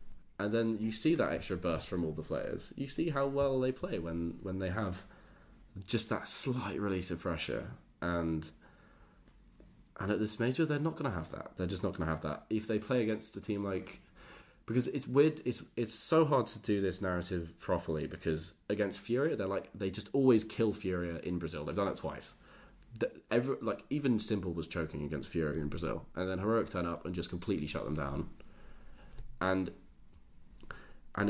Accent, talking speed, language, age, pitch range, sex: British, 200 wpm, English, 20-39, 85-110 Hz, male